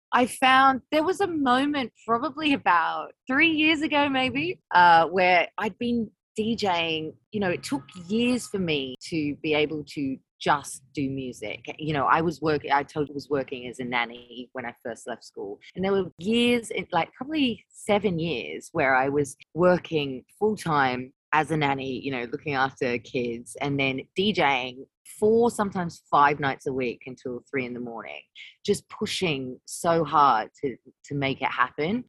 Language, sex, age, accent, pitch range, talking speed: English, female, 20-39, Australian, 135-195 Hz, 180 wpm